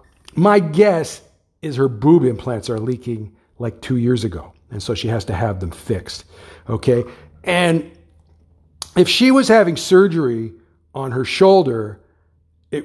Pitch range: 100-145 Hz